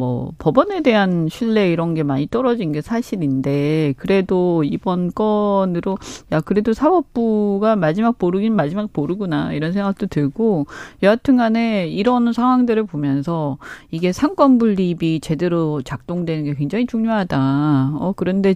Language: Korean